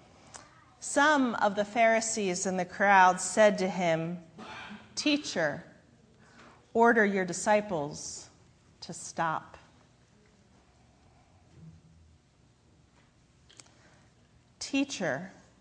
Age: 40-59